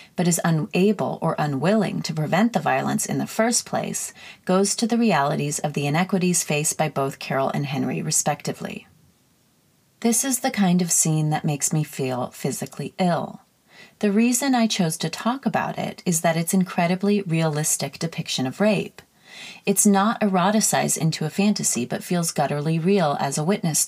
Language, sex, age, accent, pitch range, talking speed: English, female, 30-49, American, 155-205 Hz, 170 wpm